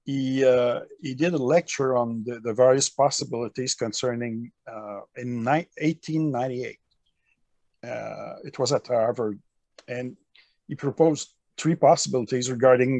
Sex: male